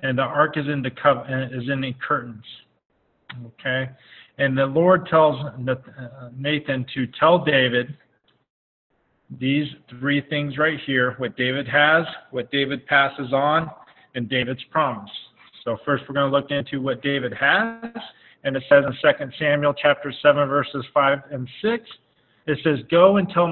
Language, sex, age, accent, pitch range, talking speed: English, male, 40-59, American, 125-150 Hz, 160 wpm